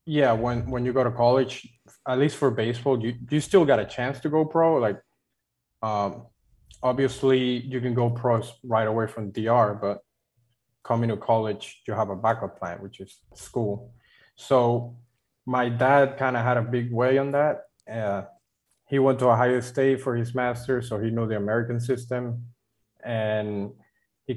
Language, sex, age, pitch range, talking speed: English, male, 20-39, 115-135 Hz, 175 wpm